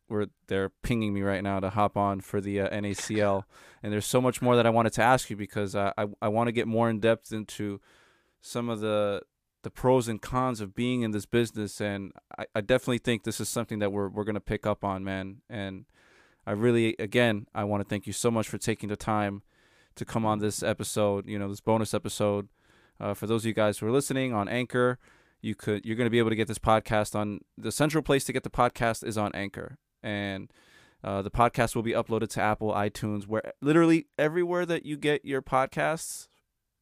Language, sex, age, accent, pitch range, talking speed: English, male, 20-39, American, 105-120 Hz, 225 wpm